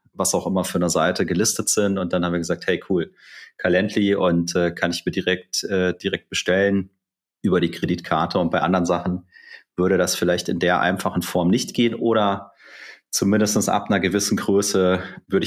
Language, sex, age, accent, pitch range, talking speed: German, male, 30-49, German, 95-130 Hz, 185 wpm